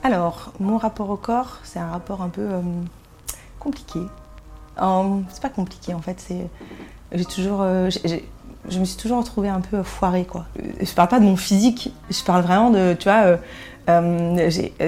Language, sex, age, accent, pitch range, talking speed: French, female, 30-49, French, 175-205 Hz, 190 wpm